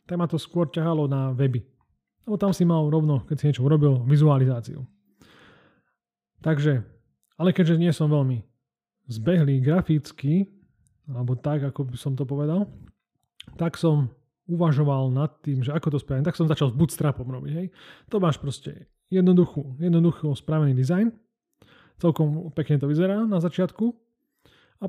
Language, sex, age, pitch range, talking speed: Slovak, male, 30-49, 135-170 Hz, 145 wpm